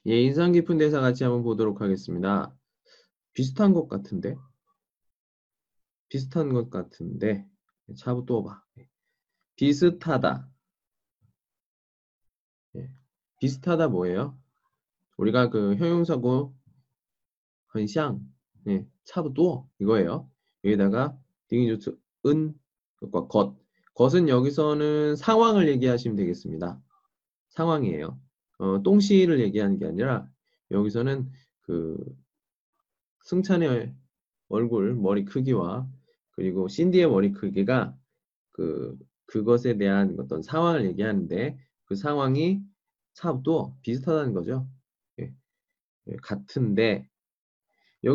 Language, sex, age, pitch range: Chinese, male, 20-39, 100-155 Hz